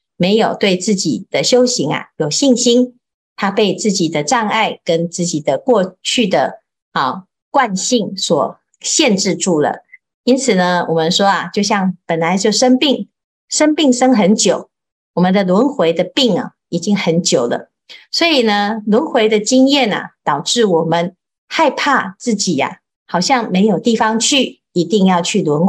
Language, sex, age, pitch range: Chinese, female, 50-69, 175-245 Hz